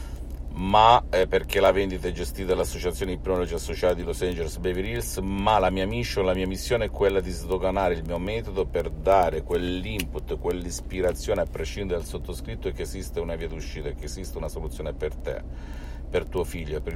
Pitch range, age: 65-85 Hz, 50-69